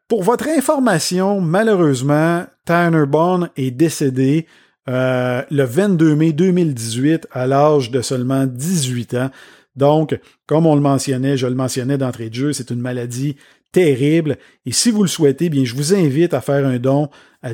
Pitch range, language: 130-165 Hz, French